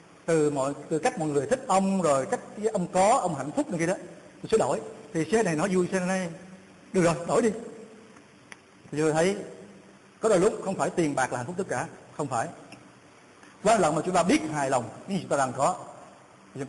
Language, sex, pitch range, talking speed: Vietnamese, male, 150-200 Hz, 235 wpm